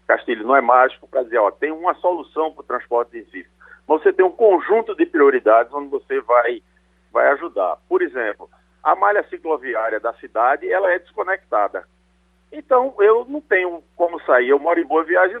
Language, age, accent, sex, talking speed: Portuguese, 50-69, Brazilian, male, 185 wpm